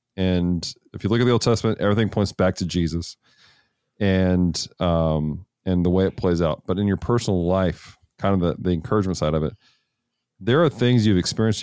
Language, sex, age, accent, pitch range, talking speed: English, male, 40-59, American, 90-115 Hz, 200 wpm